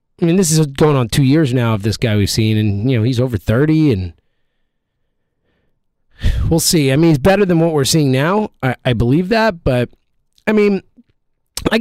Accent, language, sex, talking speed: American, English, male, 205 wpm